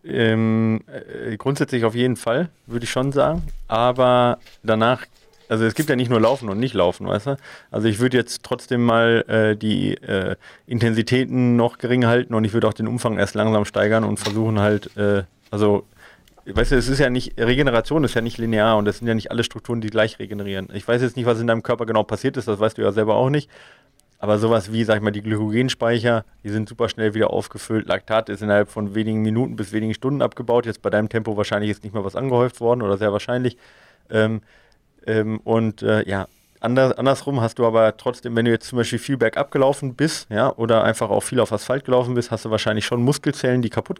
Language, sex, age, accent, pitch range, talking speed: German, male, 30-49, German, 110-125 Hz, 220 wpm